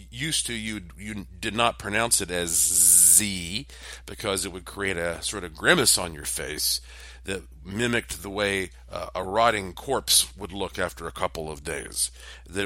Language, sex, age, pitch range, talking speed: English, male, 50-69, 80-100 Hz, 175 wpm